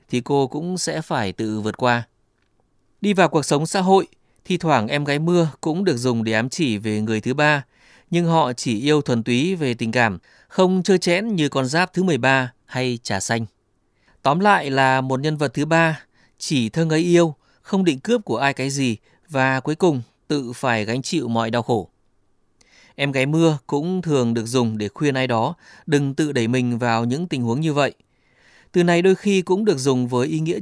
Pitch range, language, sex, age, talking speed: 120-160 Hz, Vietnamese, male, 20-39, 215 wpm